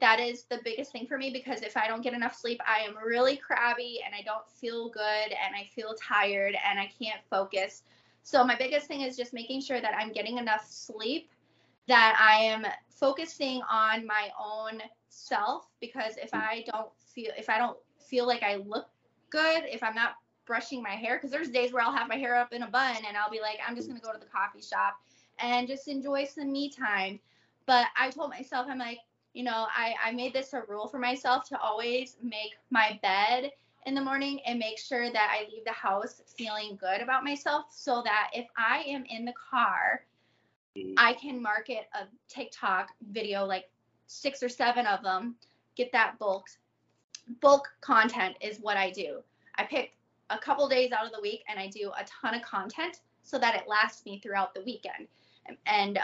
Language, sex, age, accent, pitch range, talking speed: English, female, 20-39, American, 215-255 Hz, 205 wpm